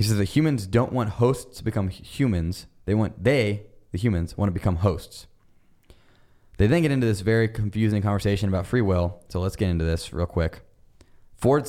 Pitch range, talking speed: 90-110 Hz, 195 wpm